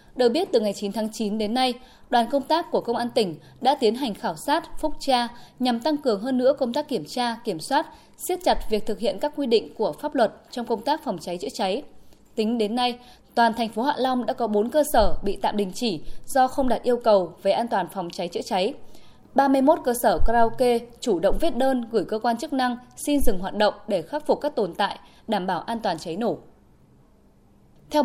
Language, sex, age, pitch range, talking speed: Vietnamese, female, 20-39, 215-270 Hz, 240 wpm